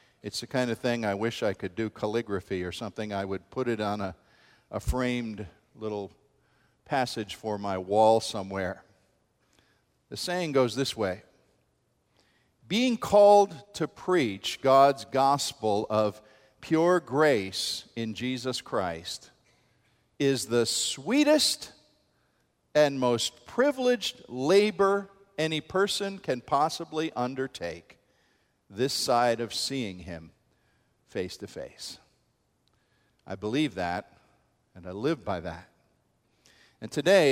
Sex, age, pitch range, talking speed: male, 50-69, 110-160 Hz, 120 wpm